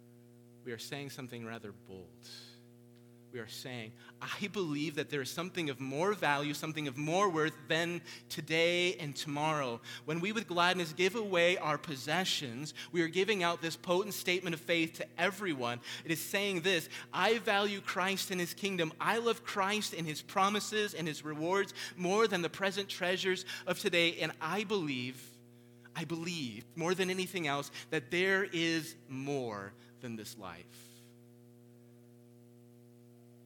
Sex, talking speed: male, 155 wpm